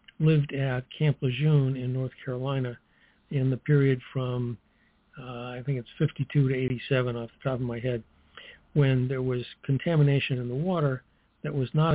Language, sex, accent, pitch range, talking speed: English, male, American, 125-145 Hz, 170 wpm